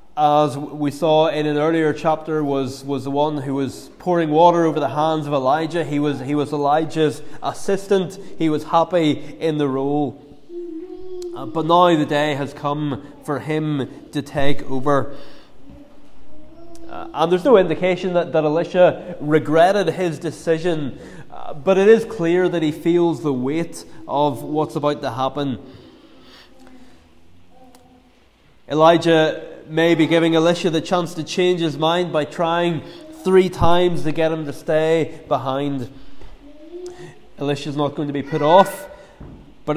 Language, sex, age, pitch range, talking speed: English, male, 20-39, 145-180 Hz, 145 wpm